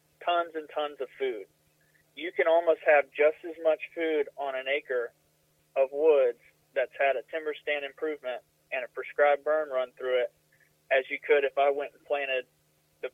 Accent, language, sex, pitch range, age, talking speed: American, English, male, 130-185 Hz, 30-49, 185 wpm